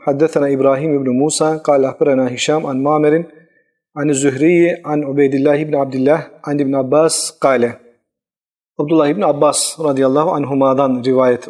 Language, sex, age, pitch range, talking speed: Turkish, male, 40-59, 140-160 Hz, 140 wpm